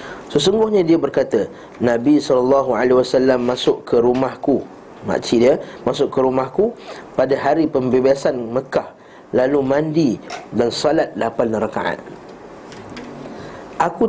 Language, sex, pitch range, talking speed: Malay, male, 130-165 Hz, 100 wpm